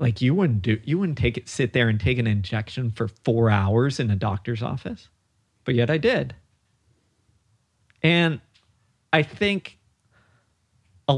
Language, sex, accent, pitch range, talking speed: English, male, American, 100-125 Hz, 155 wpm